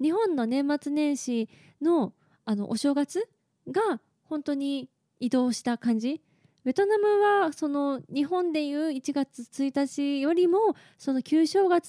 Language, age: Japanese, 20-39